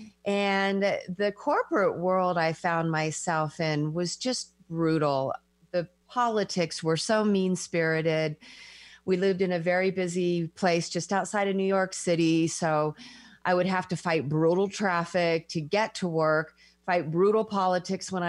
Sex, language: female, English